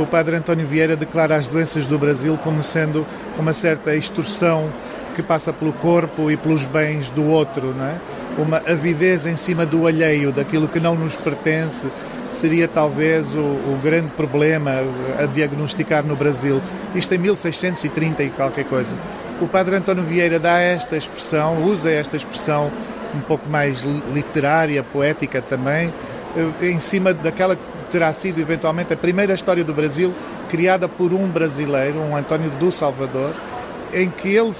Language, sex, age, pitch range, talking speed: Portuguese, male, 40-59, 150-175 Hz, 155 wpm